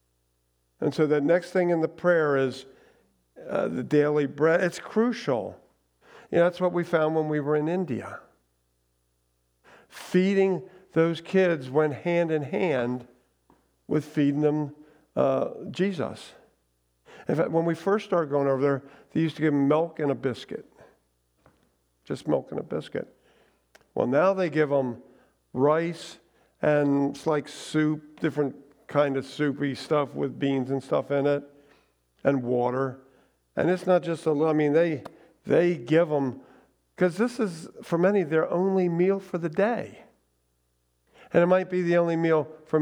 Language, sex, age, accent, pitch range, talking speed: English, male, 50-69, American, 140-180 Hz, 165 wpm